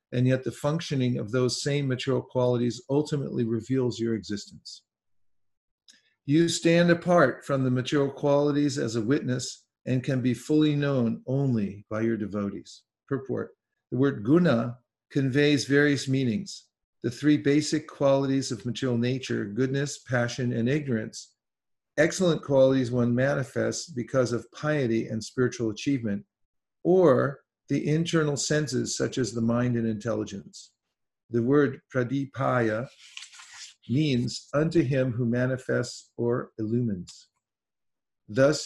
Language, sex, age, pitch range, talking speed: English, male, 50-69, 115-145 Hz, 125 wpm